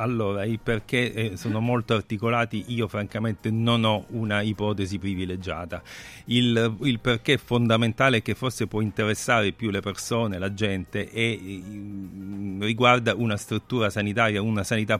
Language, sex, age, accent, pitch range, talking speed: Italian, male, 40-59, native, 95-115 Hz, 145 wpm